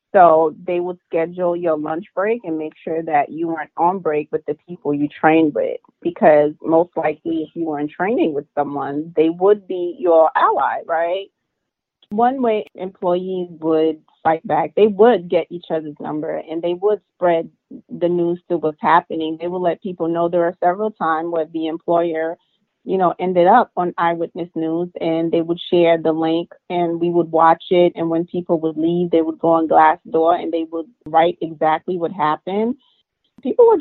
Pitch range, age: 165-195 Hz, 30-49